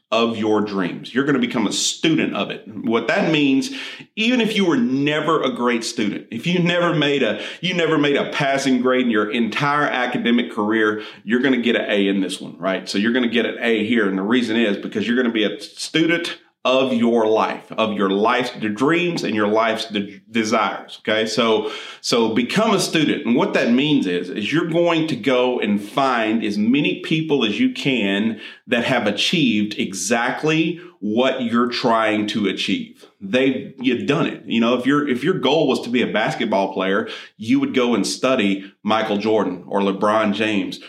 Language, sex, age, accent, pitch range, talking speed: English, male, 40-59, American, 110-145 Hz, 205 wpm